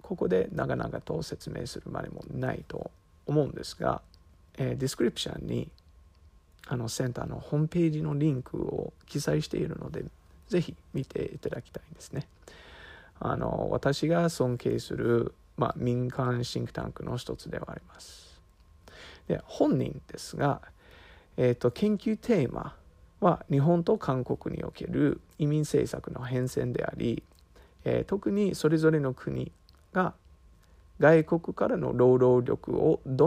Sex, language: male, English